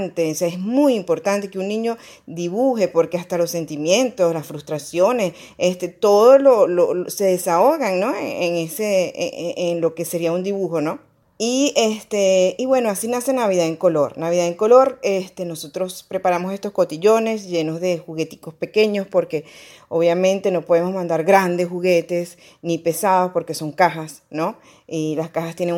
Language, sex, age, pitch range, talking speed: Spanish, female, 30-49, 160-190 Hz, 165 wpm